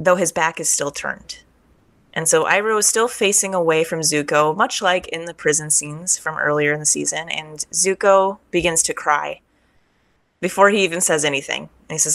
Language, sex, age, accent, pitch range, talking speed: English, female, 20-39, American, 150-180 Hz, 195 wpm